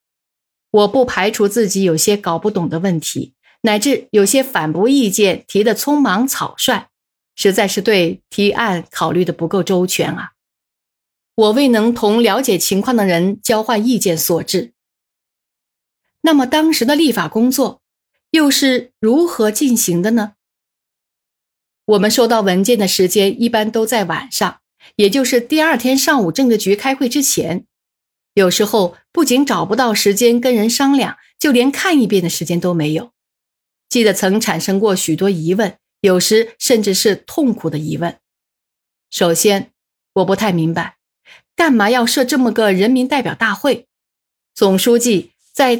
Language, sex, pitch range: Chinese, female, 190-250 Hz